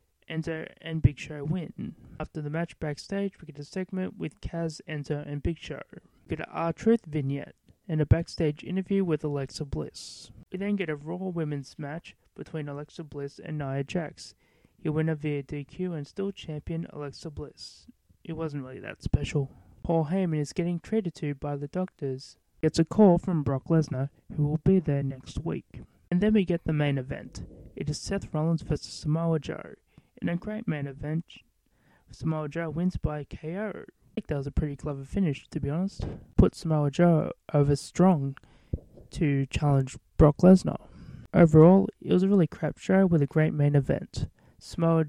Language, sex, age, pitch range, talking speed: English, male, 20-39, 145-175 Hz, 180 wpm